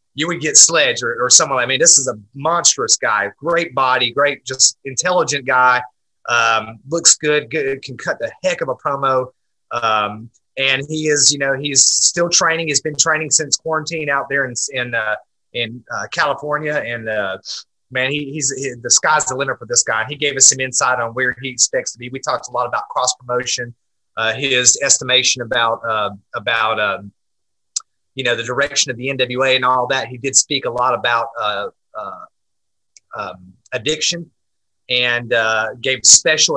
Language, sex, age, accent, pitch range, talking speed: English, male, 30-49, American, 120-140 Hz, 185 wpm